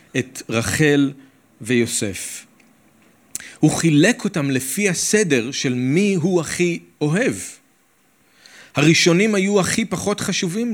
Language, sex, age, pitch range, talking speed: Hebrew, male, 40-59, 125-185 Hz, 100 wpm